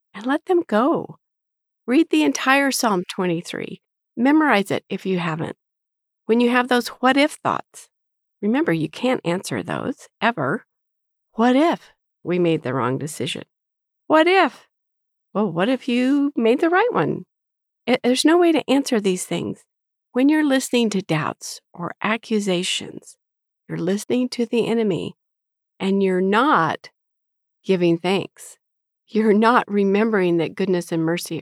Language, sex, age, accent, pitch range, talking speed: English, female, 50-69, American, 175-245 Hz, 140 wpm